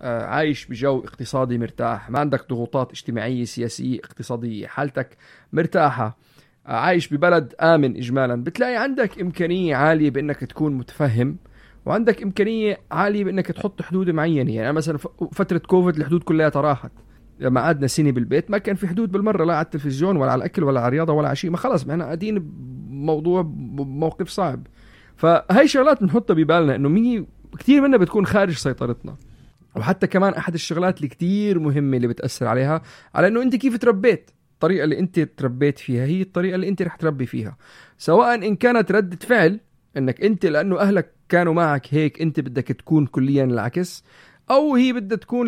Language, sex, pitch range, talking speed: Arabic, male, 135-185 Hz, 170 wpm